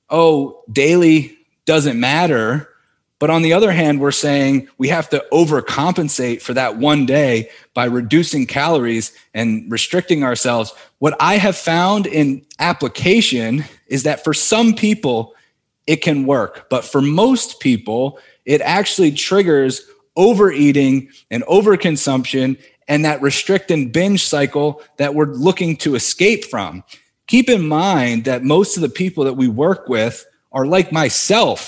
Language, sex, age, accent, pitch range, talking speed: English, male, 30-49, American, 135-180 Hz, 145 wpm